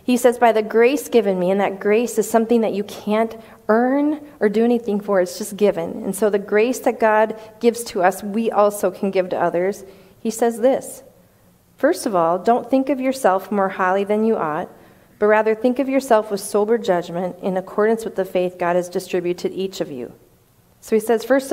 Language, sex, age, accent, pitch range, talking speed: English, female, 40-59, American, 190-235 Hz, 215 wpm